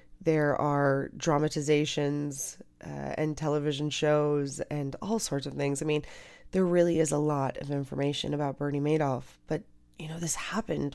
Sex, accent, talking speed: female, American, 160 wpm